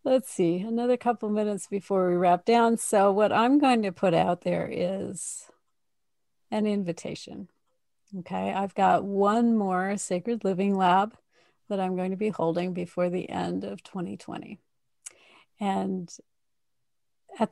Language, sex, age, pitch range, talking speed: English, female, 40-59, 185-220 Hz, 145 wpm